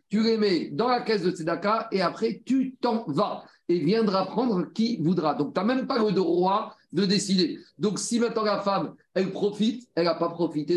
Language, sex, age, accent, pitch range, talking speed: French, male, 50-69, French, 170-210 Hz, 210 wpm